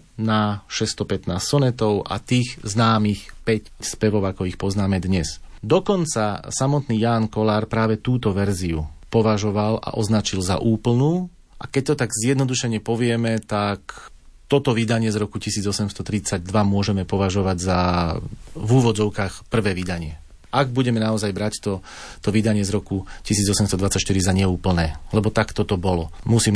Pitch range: 95-115 Hz